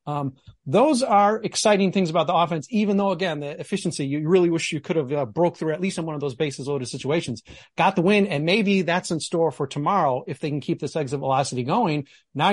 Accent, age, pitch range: American, 40-59, 145-205 Hz